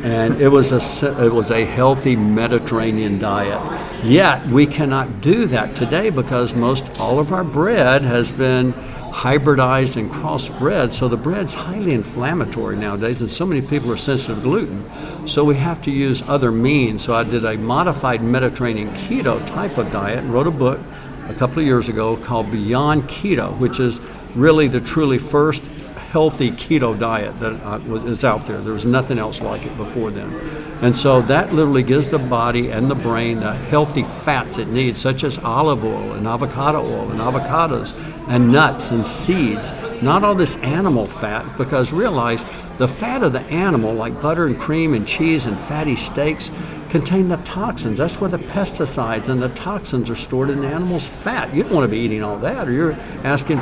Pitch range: 115-150 Hz